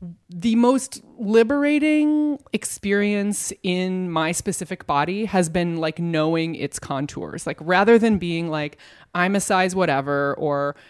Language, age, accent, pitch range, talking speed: English, 20-39, American, 150-200 Hz, 130 wpm